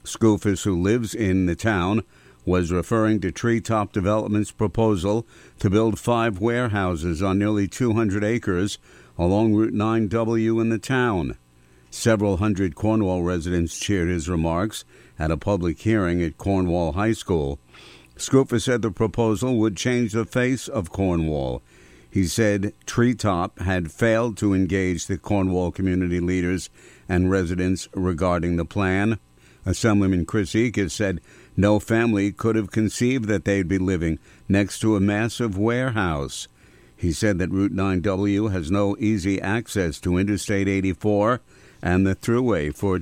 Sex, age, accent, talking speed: male, 60-79, American, 140 wpm